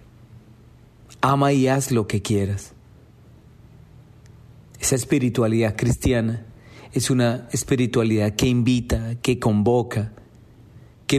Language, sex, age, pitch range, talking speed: Spanish, male, 40-59, 110-135 Hz, 90 wpm